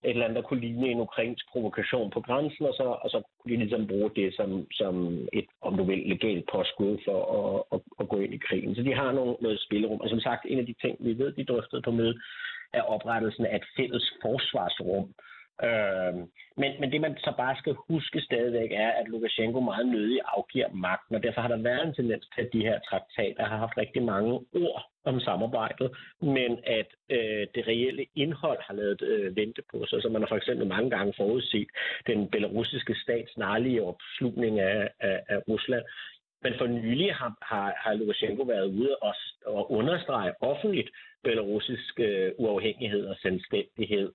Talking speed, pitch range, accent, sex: 195 wpm, 115-150 Hz, native, male